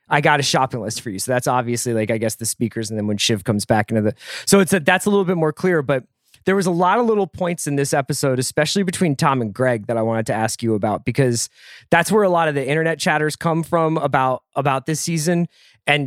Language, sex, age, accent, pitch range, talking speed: English, male, 30-49, American, 130-175 Hz, 265 wpm